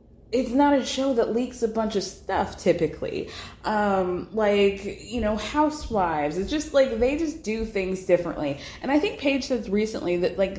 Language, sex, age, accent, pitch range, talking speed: English, female, 20-39, American, 175-230 Hz, 180 wpm